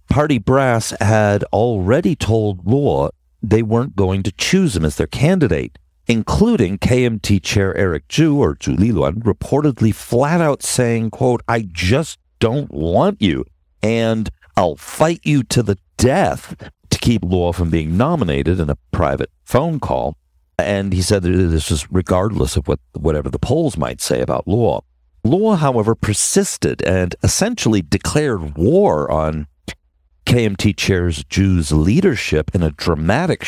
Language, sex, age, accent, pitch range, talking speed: English, male, 50-69, American, 80-120 Hz, 145 wpm